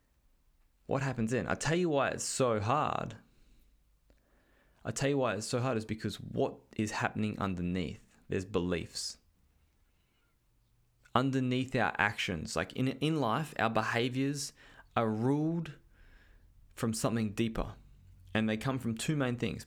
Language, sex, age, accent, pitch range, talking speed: English, male, 20-39, Australian, 85-115 Hz, 140 wpm